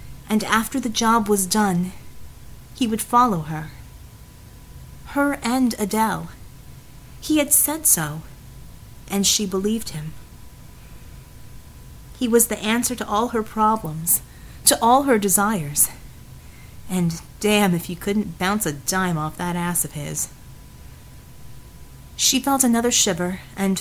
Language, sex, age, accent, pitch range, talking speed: English, female, 30-49, American, 175-230 Hz, 125 wpm